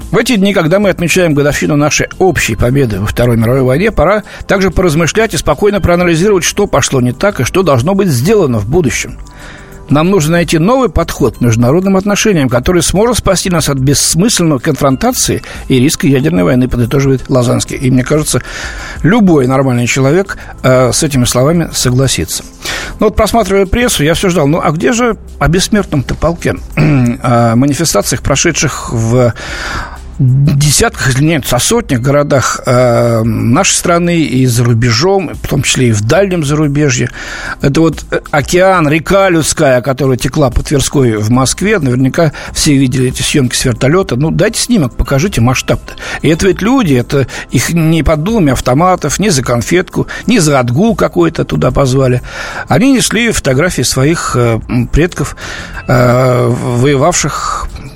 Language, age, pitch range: Russian, 60-79, 125-180 Hz